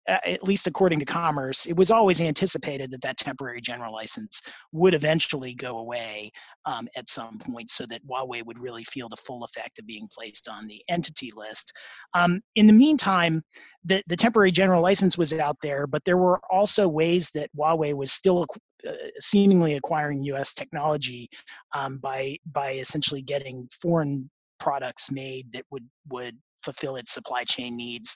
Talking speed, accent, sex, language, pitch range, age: 170 wpm, American, male, English, 130-175 Hz, 30-49